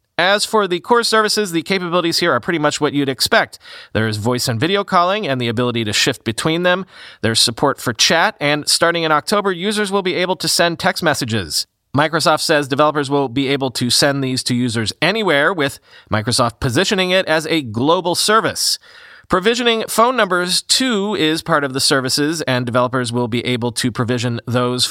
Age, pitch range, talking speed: 30-49, 130-185 Hz, 190 wpm